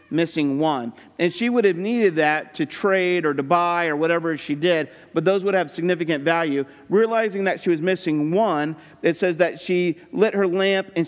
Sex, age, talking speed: male, 50-69, 200 wpm